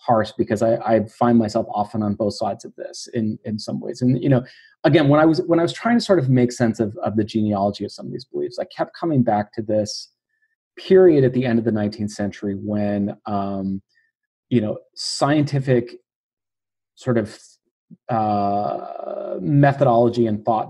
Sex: male